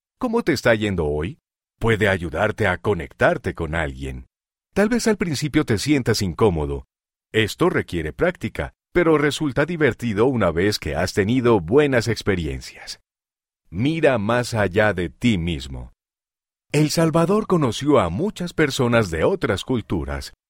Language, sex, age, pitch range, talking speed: Spanish, male, 50-69, 90-140 Hz, 135 wpm